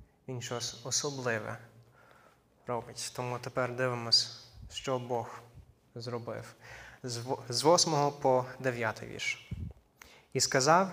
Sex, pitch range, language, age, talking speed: male, 120-140 Hz, Ukrainian, 20-39, 95 wpm